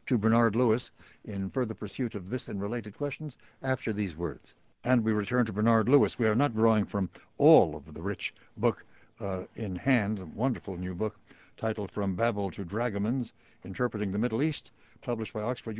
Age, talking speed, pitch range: 60-79, 185 wpm, 105-125 Hz